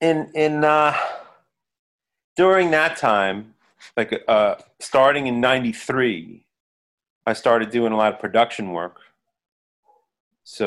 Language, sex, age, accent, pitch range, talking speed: English, male, 30-49, American, 95-120 Hz, 110 wpm